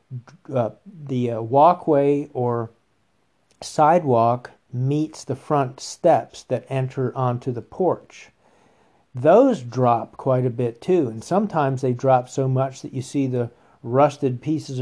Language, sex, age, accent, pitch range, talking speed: English, male, 50-69, American, 125-150 Hz, 135 wpm